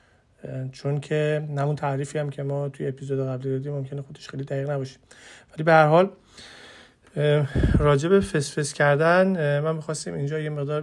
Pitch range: 130-160 Hz